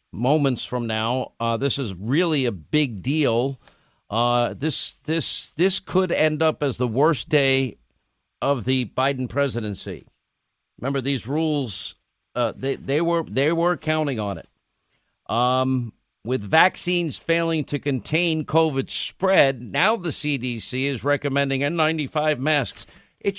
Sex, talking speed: male, 135 wpm